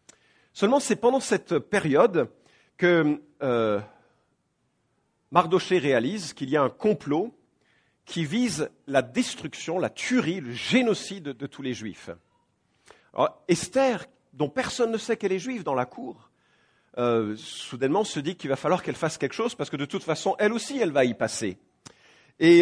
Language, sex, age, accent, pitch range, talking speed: English, male, 50-69, French, 140-210 Hz, 160 wpm